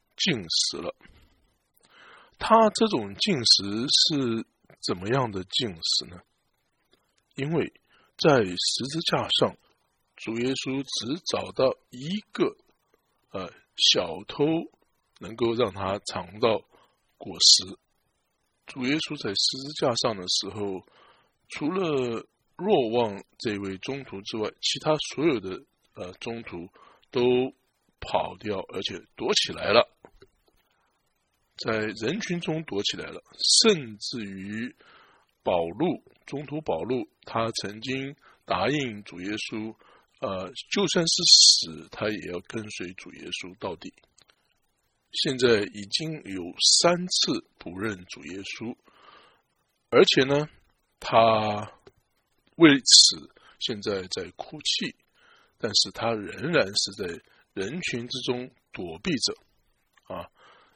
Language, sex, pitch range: English, male, 105-160 Hz